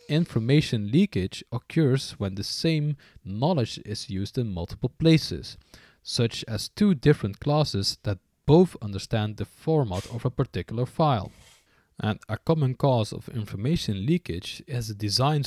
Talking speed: 140 wpm